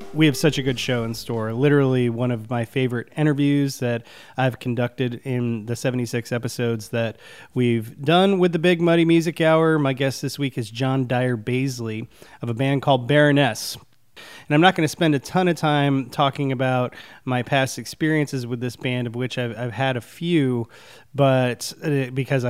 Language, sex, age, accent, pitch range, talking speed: English, male, 20-39, American, 120-145 Hz, 185 wpm